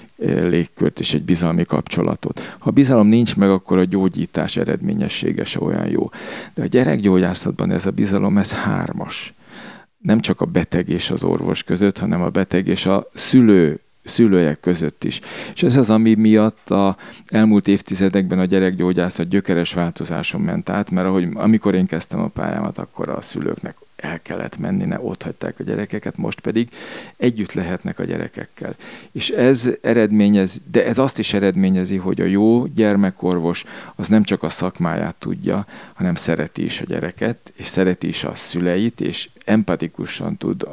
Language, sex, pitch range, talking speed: Hungarian, male, 90-110 Hz, 155 wpm